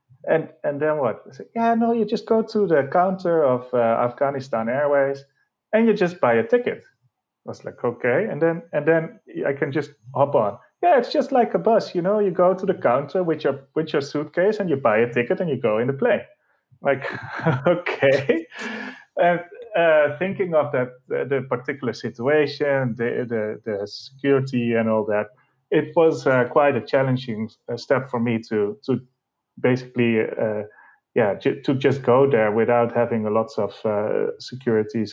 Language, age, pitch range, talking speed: English, 30-49, 115-155 Hz, 190 wpm